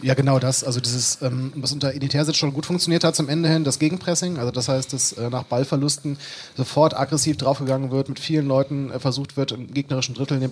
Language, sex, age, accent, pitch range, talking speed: German, male, 30-49, German, 125-145 Hz, 220 wpm